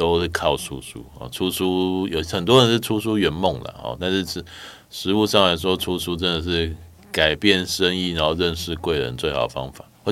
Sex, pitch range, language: male, 75-95 Hz, Chinese